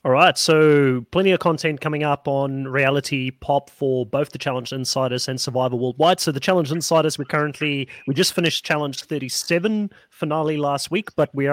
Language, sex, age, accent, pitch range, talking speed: English, male, 30-49, Australian, 140-160 Hz, 185 wpm